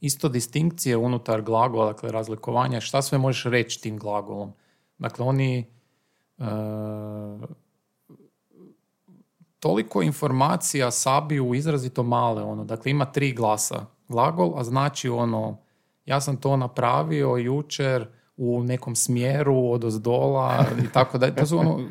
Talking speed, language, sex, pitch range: 120 wpm, Croatian, male, 120-145 Hz